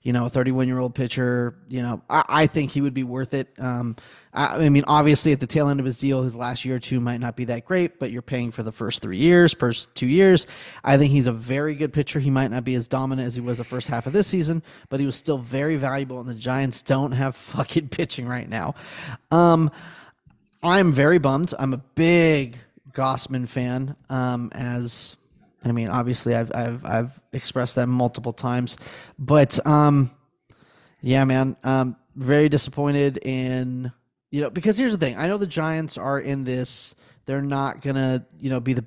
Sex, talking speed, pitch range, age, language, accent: male, 210 wpm, 125-145 Hz, 20-39, English, American